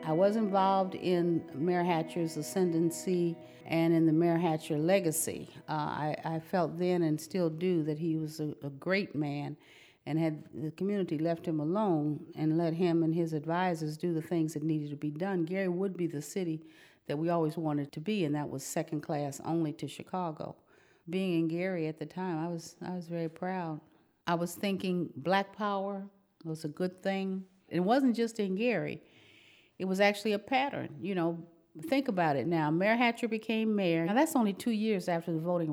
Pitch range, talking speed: 160-195 Hz, 195 wpm